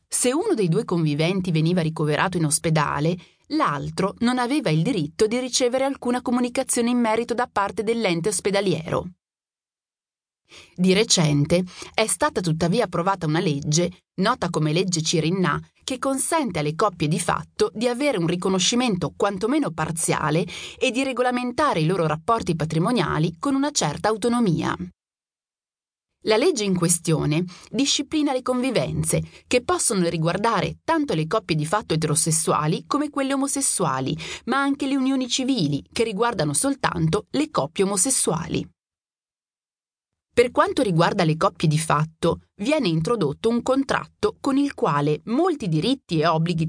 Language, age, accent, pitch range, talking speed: Italian, 30-49, native, 160-250 Hz, 140 wpm